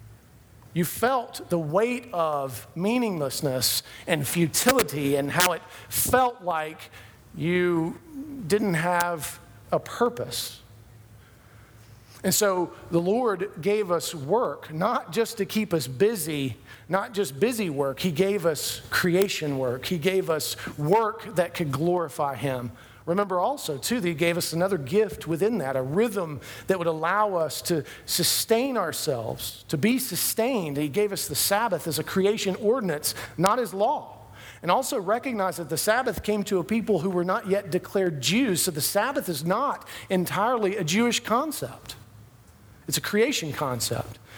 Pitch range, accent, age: 135-190 Hz, American, 50-69